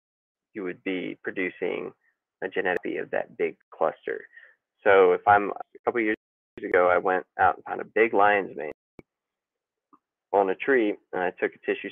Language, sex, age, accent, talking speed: English, male, 20-39, American, 165 wpm